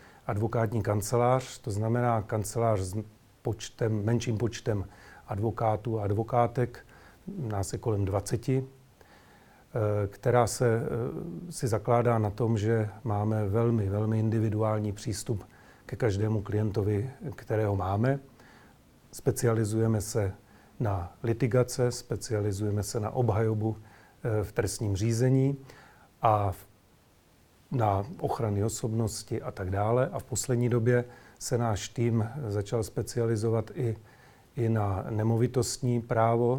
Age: 40-59